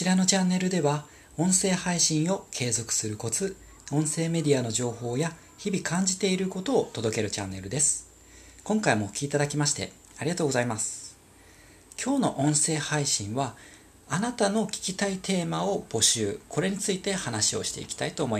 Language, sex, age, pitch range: Japanese, male, 40-59, 110-170 Hz